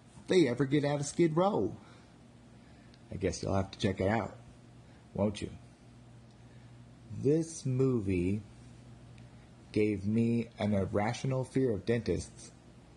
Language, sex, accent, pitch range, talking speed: English, male, American, 105-120 Hz, 115 wpm